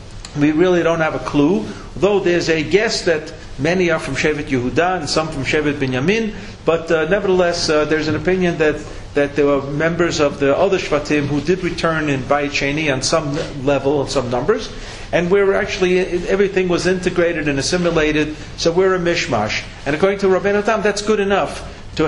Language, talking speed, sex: English, 190 wpm, male